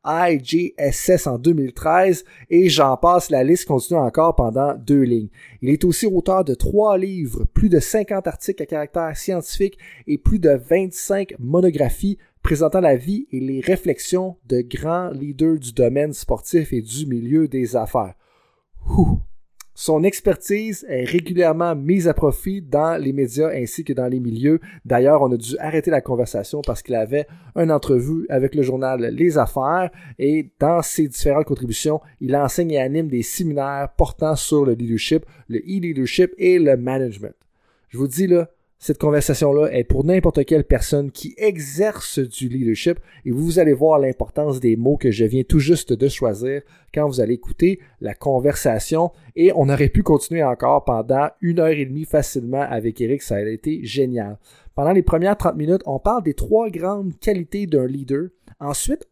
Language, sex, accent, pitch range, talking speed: French, male, Canadian, 130-175 Hz, 170 wpm